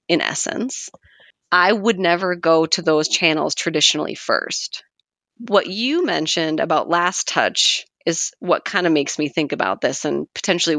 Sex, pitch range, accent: female, 155-190 Hz, American